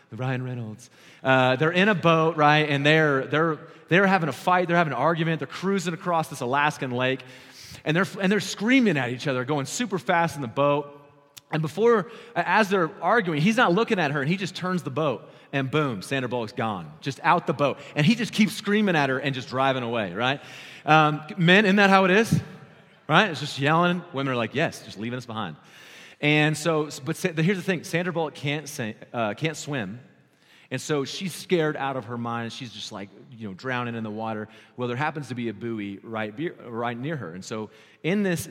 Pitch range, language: 120-165 Hz, English